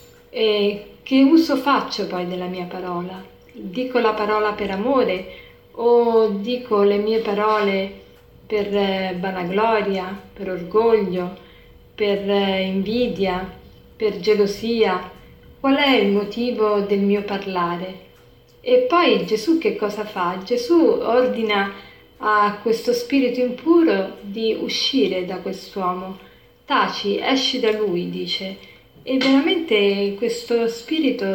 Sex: female